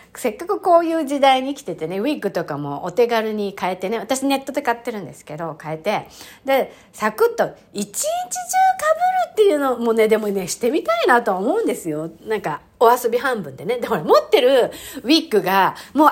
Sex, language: female, Japanese